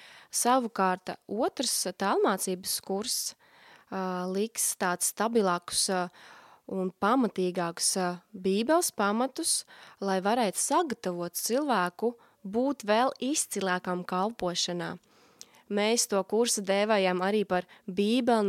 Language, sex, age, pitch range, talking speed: Russian, female, 20-39, 180-220 Hz, 95 wpm